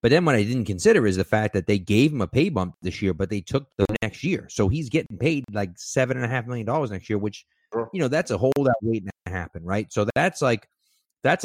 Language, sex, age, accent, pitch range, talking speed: English, male, 30-49, American, 95-120 Hz, 265 wpm